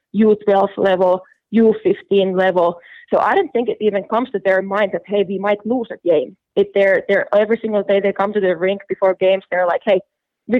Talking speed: 225 wpm